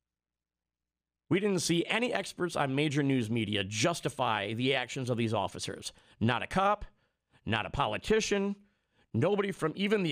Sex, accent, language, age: male, American, English, 50-69